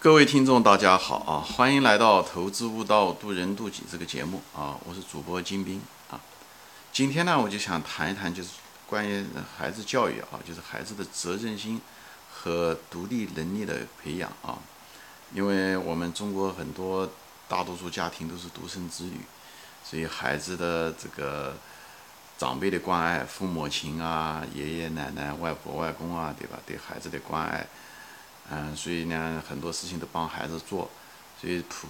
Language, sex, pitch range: Chinese, male, 80-95 Hz